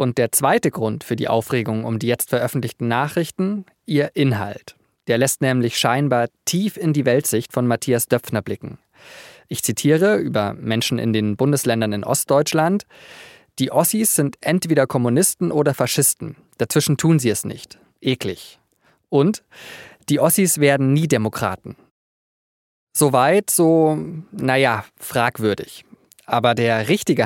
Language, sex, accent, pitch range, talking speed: German, male, German, 120-160 Hz, 135 wpm